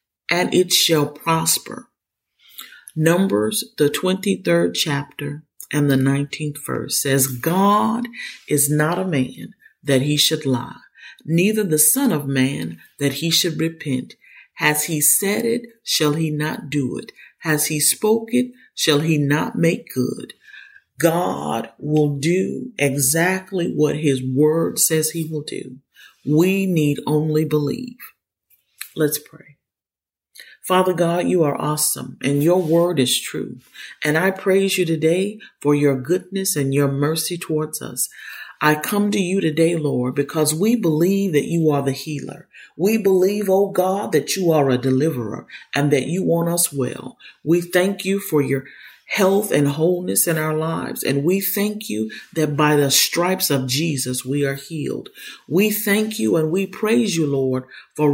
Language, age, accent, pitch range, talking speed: English, 40-59, American, 145-185 Hz, 155 wpm